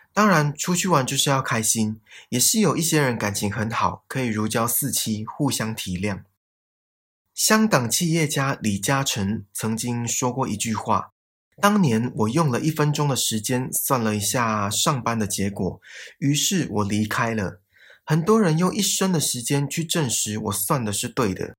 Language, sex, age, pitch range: Chinese, male, 20-39, 110-160 Hz